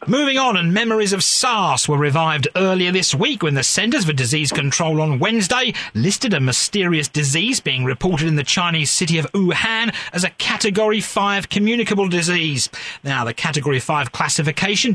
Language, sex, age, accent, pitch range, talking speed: English, male, 40-59, British, 140-200 Hz, 170 wpm